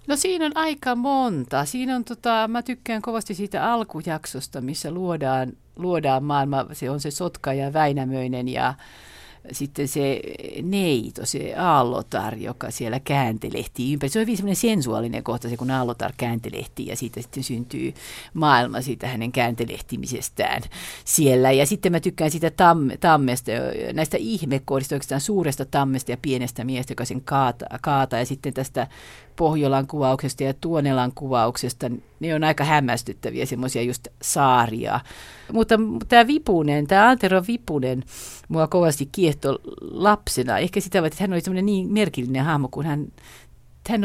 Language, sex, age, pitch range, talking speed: Finnish, female, 50-69, 130-185 Hz, 145 wpm